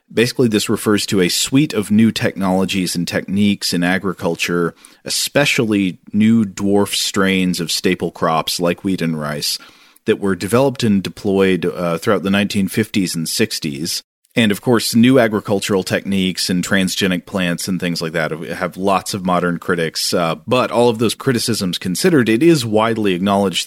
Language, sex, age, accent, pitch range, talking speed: English, male, 40-59, American, 90-105 Hz, 160 wpm